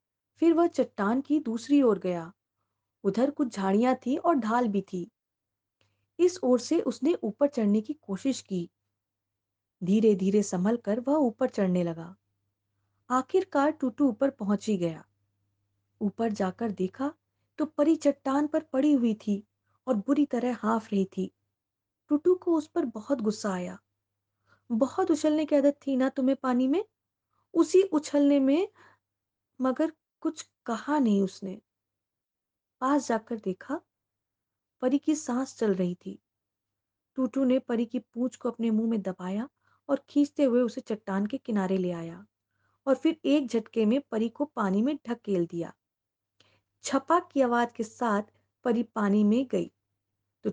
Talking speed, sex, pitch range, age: 125 wpm, female, 185-270 Hz, 30-49